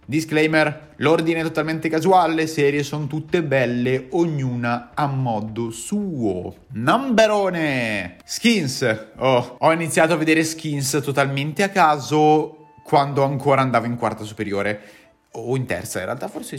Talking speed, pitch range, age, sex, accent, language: 135 wpm, 115-165 Hz, 30-49, male, native, Italian